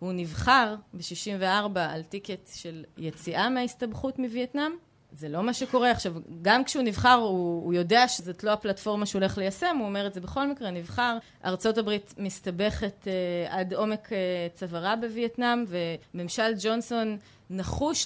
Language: Hebrew